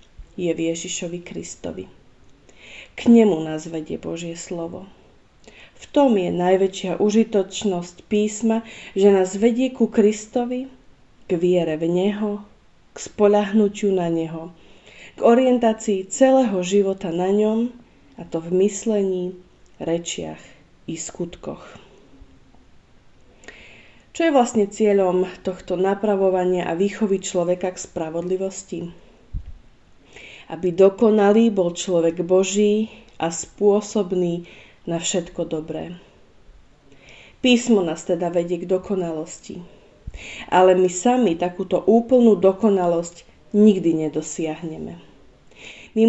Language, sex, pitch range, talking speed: Slovak, female, 170-210 Hz, 100 wpm